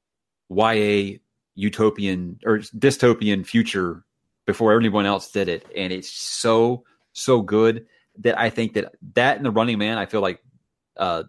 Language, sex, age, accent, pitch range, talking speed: English, male, 30-49, American, 95-120 Hz, 155 wpm